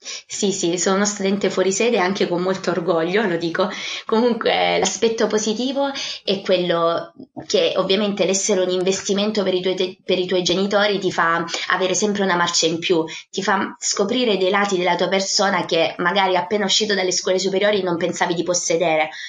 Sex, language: female, Italian